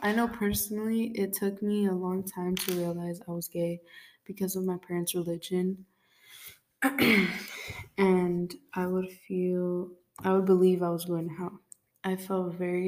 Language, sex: English, female